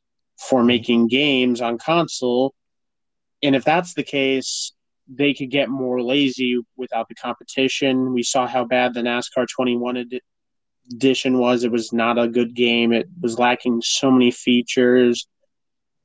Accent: American